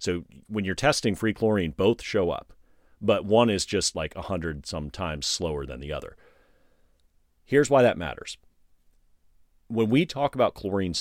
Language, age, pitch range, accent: English, 40-59, 80-110 Hz, American